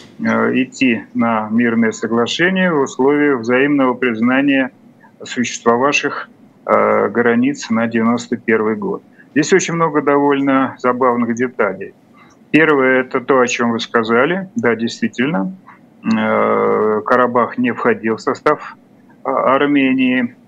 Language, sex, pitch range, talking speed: Russian, male, 120-160 Hz, 100 wpm